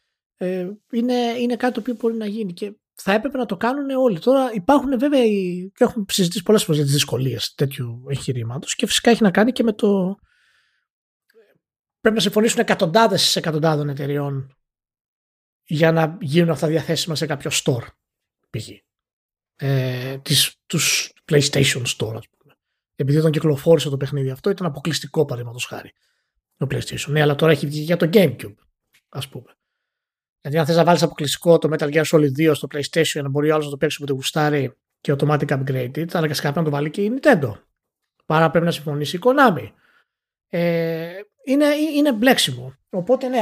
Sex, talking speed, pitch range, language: male, 175 wpm, 150-210 Hz, Greek